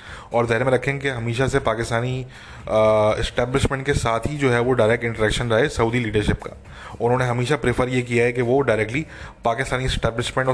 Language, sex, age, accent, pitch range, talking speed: English, male, 20-39, Indian, 110-130 Hz, 135 wpm